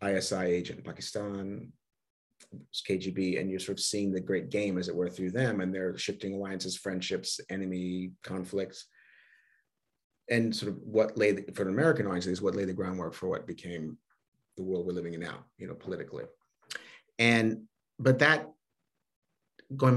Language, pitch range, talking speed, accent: English, 95-120 Hz, 165 wpm, American